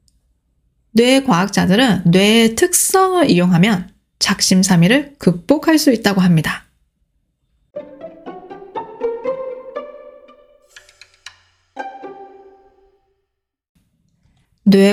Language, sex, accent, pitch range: Korean, female, native, 195-285 Hz